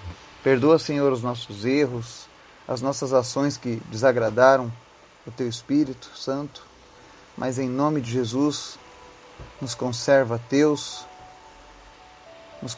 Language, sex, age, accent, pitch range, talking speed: Portuguese, male, 30-49, Brazilian, 120-145 Hz, 110 wpm